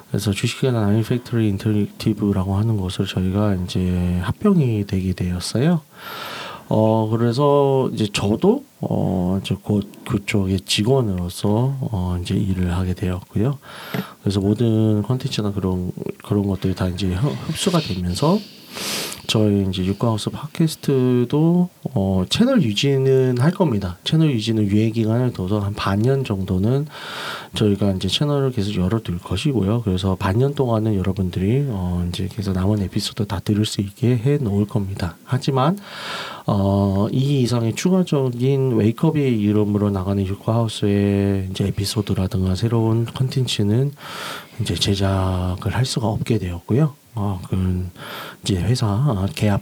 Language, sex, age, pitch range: Korean, male, 30-49, 100-130 Hz